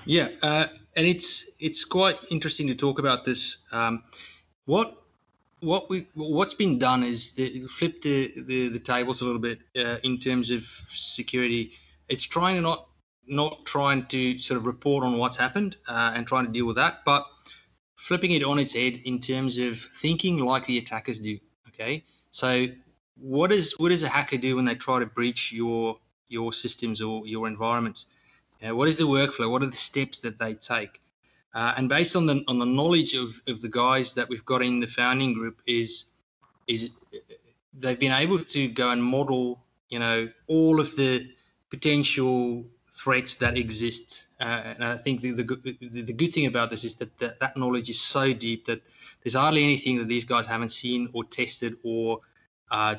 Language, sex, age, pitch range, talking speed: English, male, 20-39, 115-140 Hz, 190 wpm